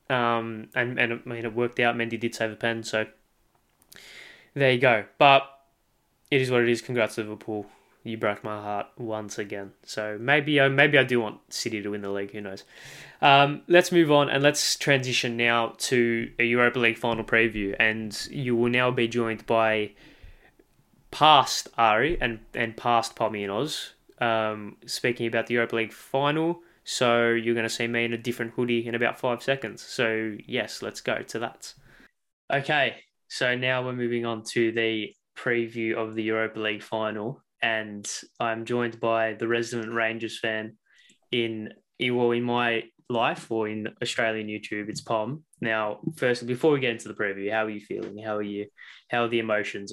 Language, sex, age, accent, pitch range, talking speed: English, male, 20-39, Australian, 110-120 Hz, 185 wpm